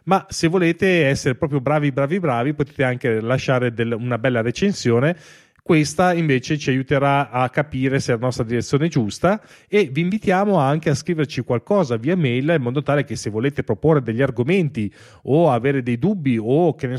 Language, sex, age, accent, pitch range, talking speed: Italian, male, 30-49, native, 120-165 Hz, 185 wpm